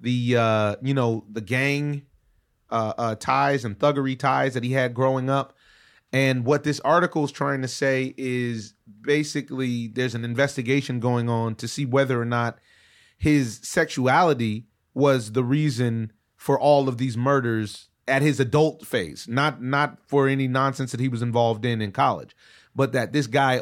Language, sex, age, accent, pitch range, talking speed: English, male, 30-49, American, 110-135 Hz, 170 wpm